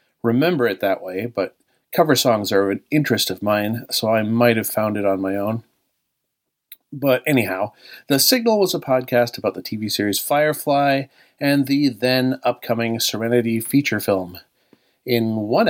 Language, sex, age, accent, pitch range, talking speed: English, male, 40-59, American, 110-130 Hz, 155 wpm